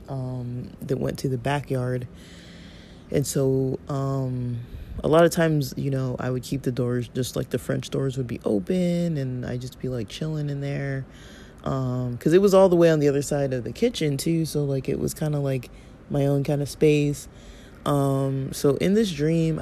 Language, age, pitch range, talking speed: English, 20-39, 130-155 Hz, 210 wpm